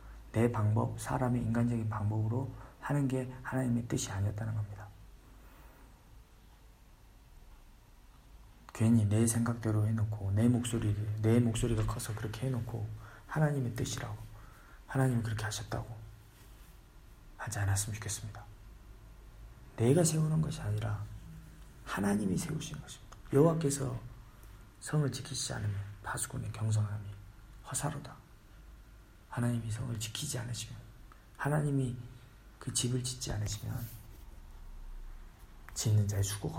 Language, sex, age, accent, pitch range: Korean, male, 40-59, native, 100-120 Hz